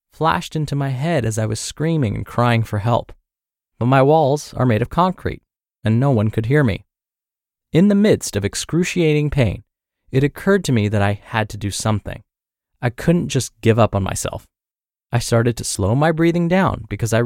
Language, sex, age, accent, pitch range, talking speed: English, male, 20-39, American, 110-150 Hz, 200 wpm